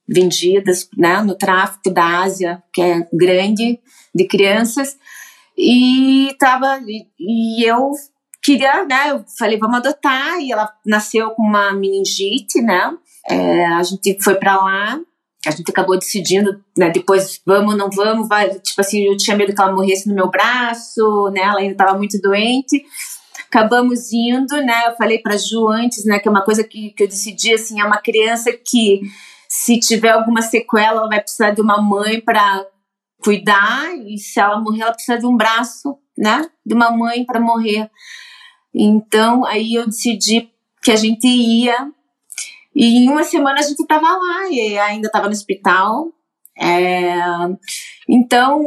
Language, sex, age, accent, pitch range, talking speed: Portuguese, female, 30-49, Brazilian, 195-245 Hz, 165 wpm